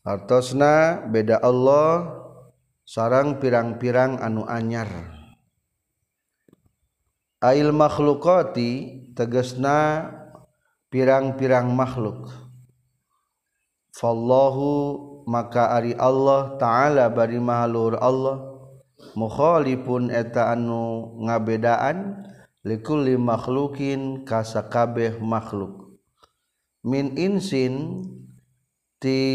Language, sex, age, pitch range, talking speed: Indonesian, male, 40-59, 115-135 Hz, 65 wpm